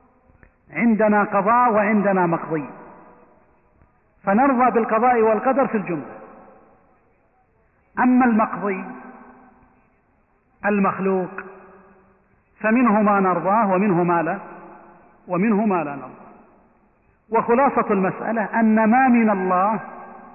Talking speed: 85 wpm